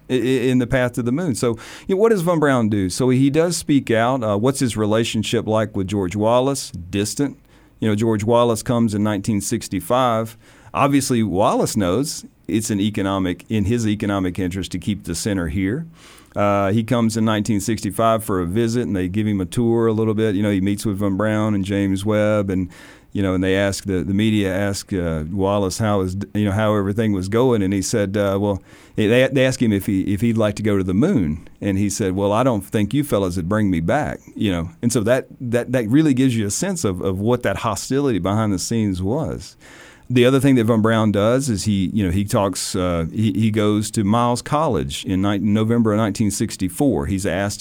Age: 40-59